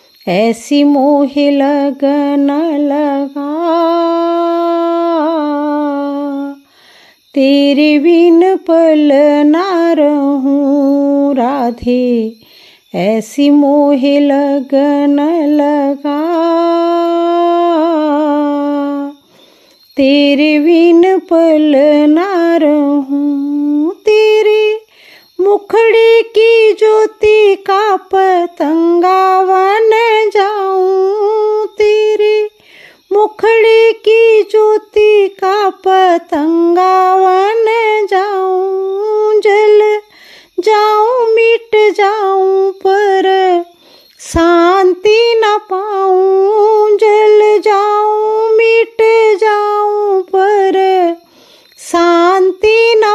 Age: 40-59